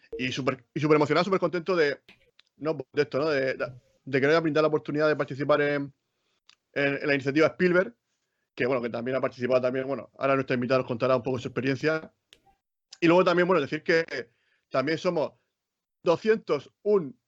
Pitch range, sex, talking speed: 135-170 Hz, male, 185 wpm